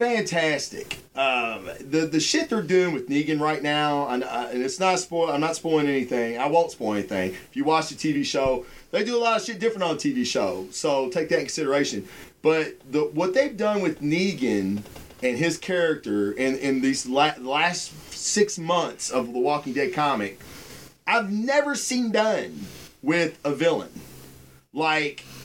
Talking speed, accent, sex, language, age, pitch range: 180 wpm, American, male, English, 30-49, 135-185 Hz